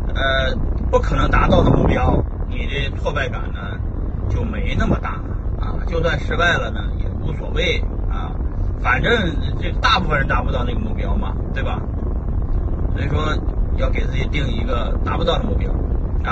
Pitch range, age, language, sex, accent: 80-100 Hz, 30-49, Chinese, male, native